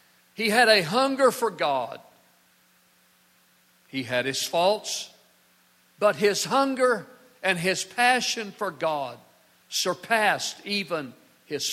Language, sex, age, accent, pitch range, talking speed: English, male, 50-69, American, 140-220 Hz, 105 wpm